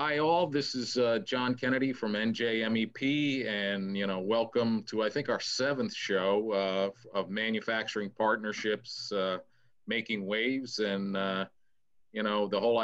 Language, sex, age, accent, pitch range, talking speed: English, male, 40-59, American, 100-115 Hz, 150 wpm